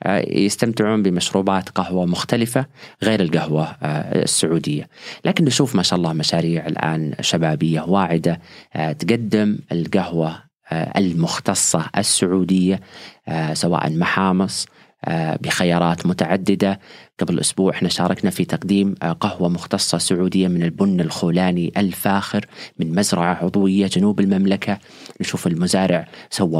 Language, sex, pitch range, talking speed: Arabic, male, 90-105 Hz, 100 wpm